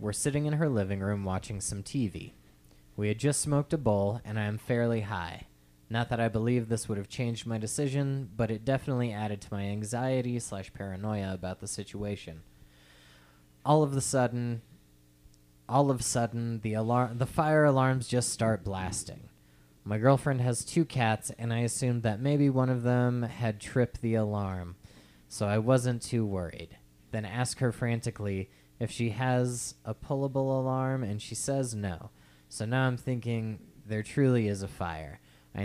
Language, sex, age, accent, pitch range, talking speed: English, male, 20-39, American, 95-125 Hz, 175 wpm